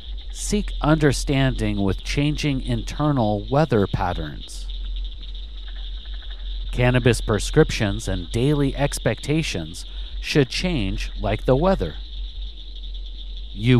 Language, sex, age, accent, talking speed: English, male, 50-69, American, 80 wpm